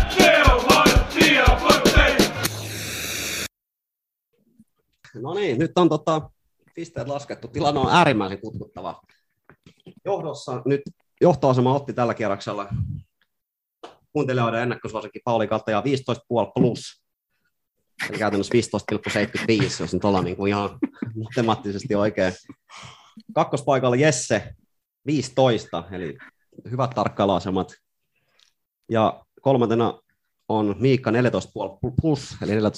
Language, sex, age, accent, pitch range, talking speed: Finnish, male, 30-49, native, 95-130 Hz, 85 wpm